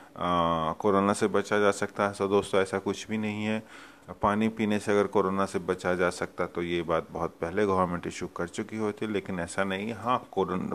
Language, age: Hindi, 30-49